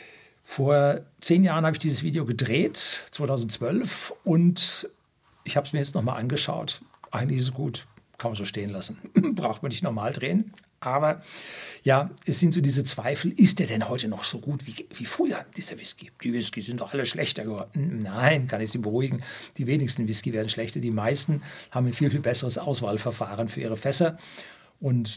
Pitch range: 115-145 Hz